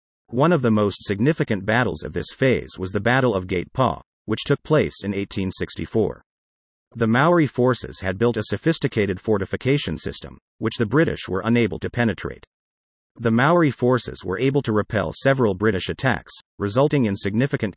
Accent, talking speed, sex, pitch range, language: American, 165 wpm, male, 95-125 Hz, English